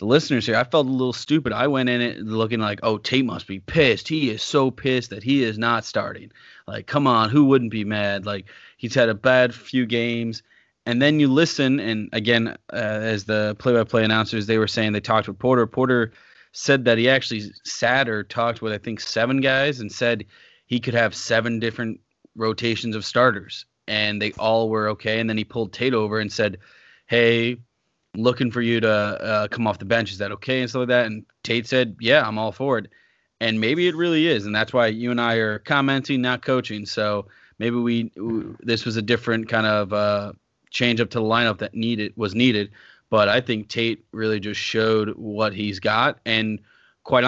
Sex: male